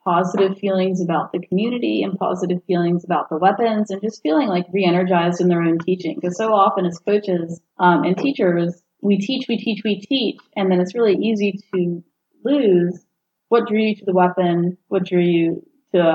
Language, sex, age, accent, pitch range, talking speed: English, female, 30-49, American, 180-220 Hz, 190 wpm